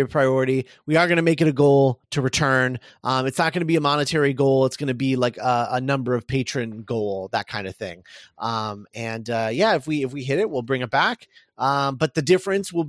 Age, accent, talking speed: 30-49, American, 250 wpm